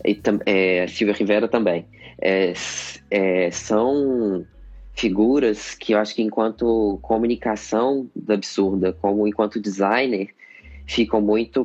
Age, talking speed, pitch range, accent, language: 20-39, 115 wpm, 95-120 Hz, Brazilian, Portuguese